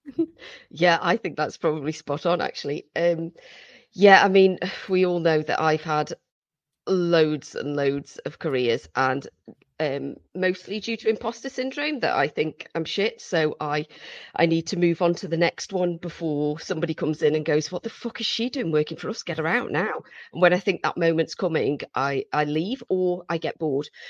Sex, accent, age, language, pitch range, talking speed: female, British, 40-59, English, 160-245 Hz, 195 wpm